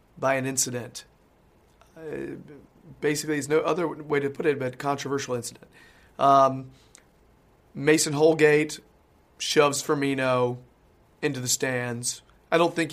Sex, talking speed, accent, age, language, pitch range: male, 120 wpm, American, 30-49, English, 130-150 Hz